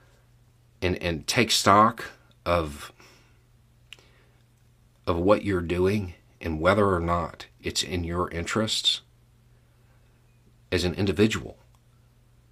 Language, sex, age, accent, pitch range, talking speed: English, male, 40-59, American, 90-120 Hz, 95 wpm